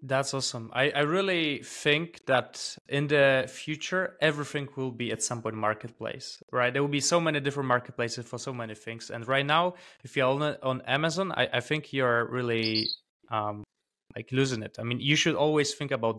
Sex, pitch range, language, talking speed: male, 125-155 Hz, English, 195 wpm